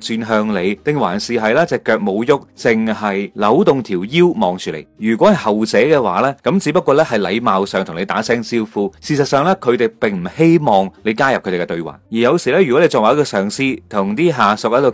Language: Chinese